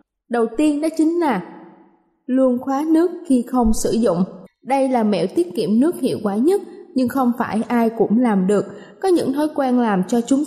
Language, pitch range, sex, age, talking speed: Vietnamese, 220-300 Hz, female, 20-39, 200 wpm